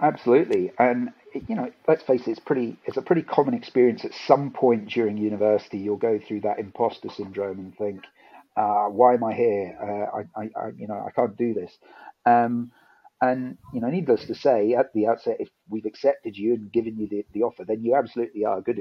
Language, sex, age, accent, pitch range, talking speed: English, male, 40-59, British, 105-140 Hz, 215 wpm